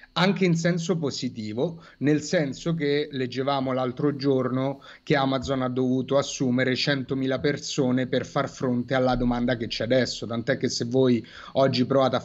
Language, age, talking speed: Italian, 30-49, 155 wpm